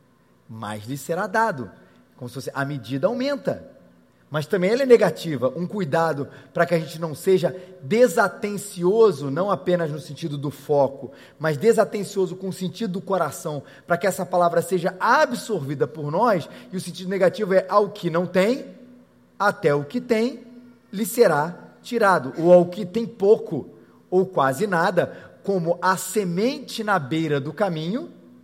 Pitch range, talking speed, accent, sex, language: 150-210 Hz, 160 wpm, Brazilian, male, Portuguese